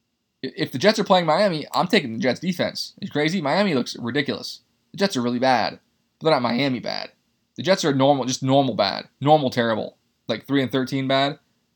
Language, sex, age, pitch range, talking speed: English, male, 20-39, 120-160 Hz, 205 wpm